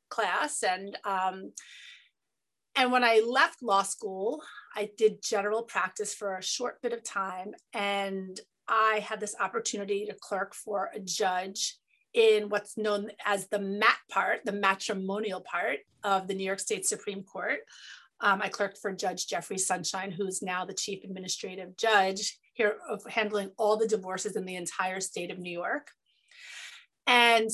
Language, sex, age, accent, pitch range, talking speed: English, female, 30-49, American, 195-245 Hz, 160 wpm